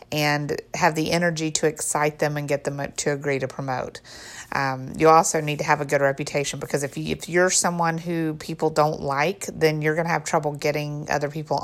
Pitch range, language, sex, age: 145-170 Hz, English, female, 30-49